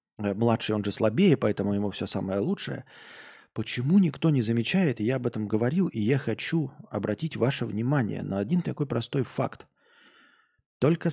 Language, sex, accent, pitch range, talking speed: Russian, male, native, 110-155 Hz, 160 wpm